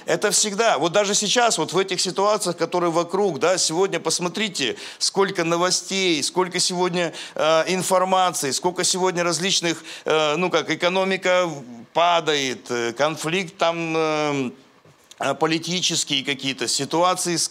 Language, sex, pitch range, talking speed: Russian, male, 155-195 Hz, 120 wpm